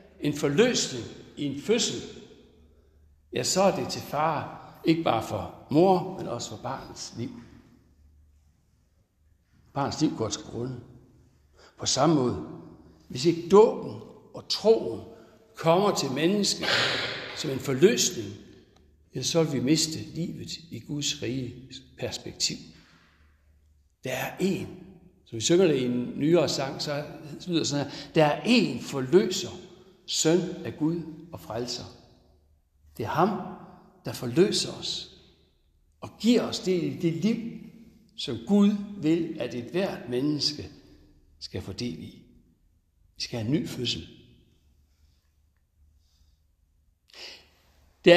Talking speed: 125 wpm